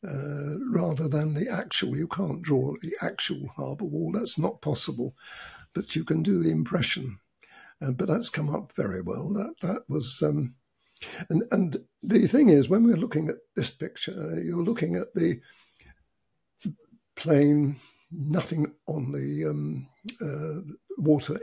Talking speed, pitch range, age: 170 wpm, 145-190 Hz, 60-79